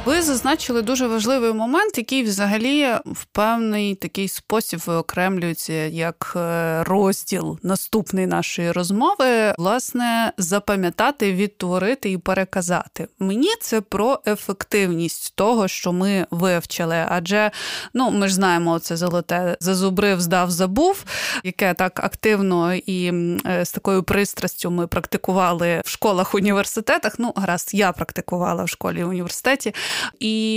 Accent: native